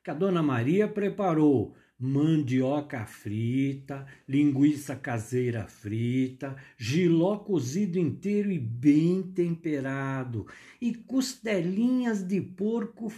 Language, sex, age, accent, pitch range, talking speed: Portuguese, male, 60-79, Brazilian, 120-195 Hz, 90 wpm